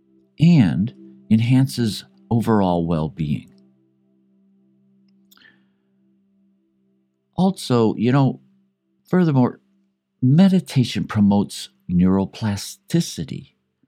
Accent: American